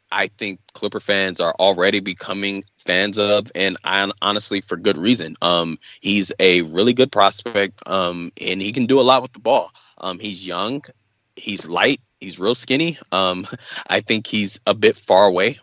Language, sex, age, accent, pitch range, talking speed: English, male, 20-39, American, 90-105 Hz, 180 wpm